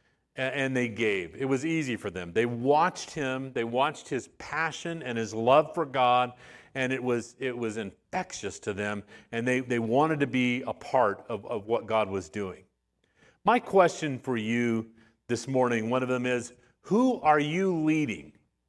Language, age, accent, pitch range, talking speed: English, 40-59, American, 120-160 Hz, 175 wpm